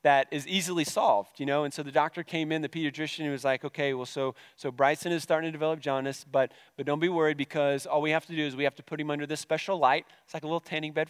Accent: American